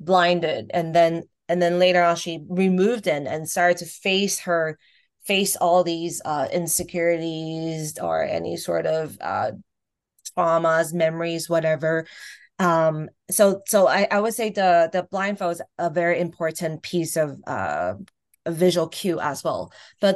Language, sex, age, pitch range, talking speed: English, female, 20-39, 160-185 Hz, 150 wpm